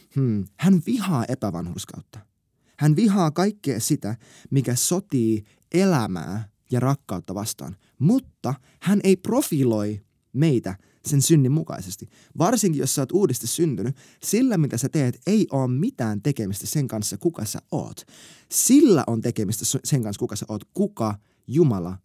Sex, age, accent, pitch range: male, 20-39, native, 115-160 Hz